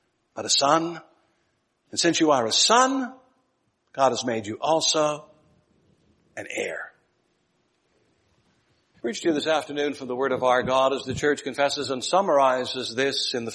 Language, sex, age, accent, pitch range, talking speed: English, male, 60-79, American, 130-180 Hz, 165 wpm